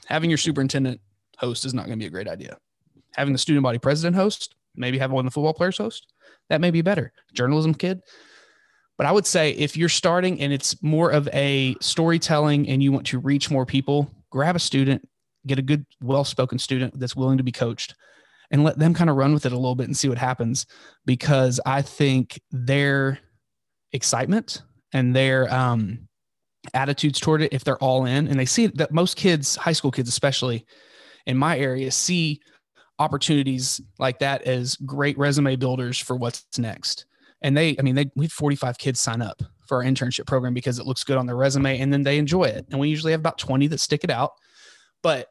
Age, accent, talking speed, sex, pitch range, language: 20-39, American, 205 wpm, male, 130-155 Hz, English